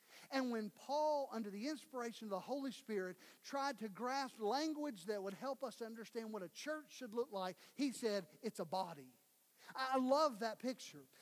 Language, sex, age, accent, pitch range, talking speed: English, male, 50-69, American, 205-260 Hz, 180 wpm